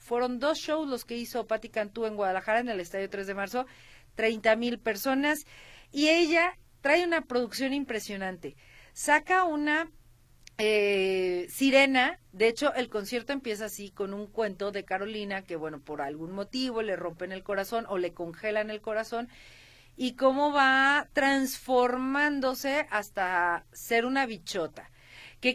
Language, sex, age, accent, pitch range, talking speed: Spanish, female, 40-59, Mexican, 205-265 Hz, 150 wpm